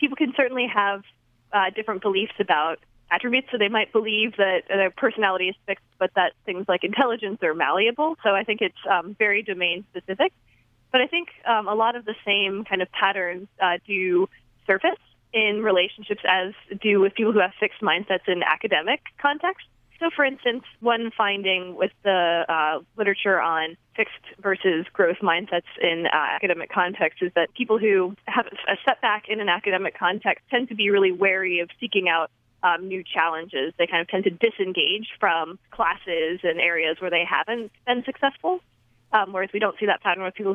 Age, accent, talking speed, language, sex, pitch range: 20-39, American, 185 wpm, English, female, 180-220 Hz